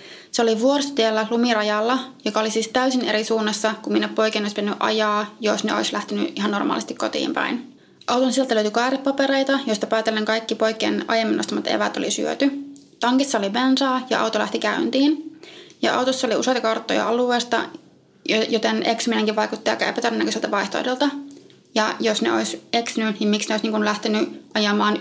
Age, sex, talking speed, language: 20-39, female, 160 wpm, Finnish